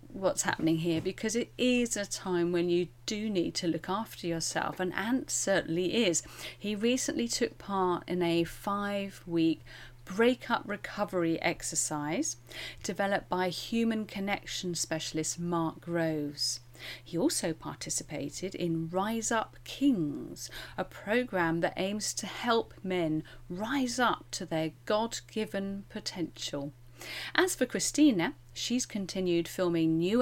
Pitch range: 160-215 Hz